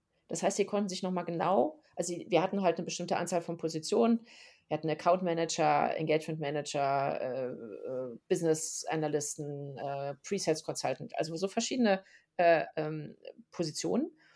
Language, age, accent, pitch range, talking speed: German, 30-49, German, 160-190 Hz, 145 wpm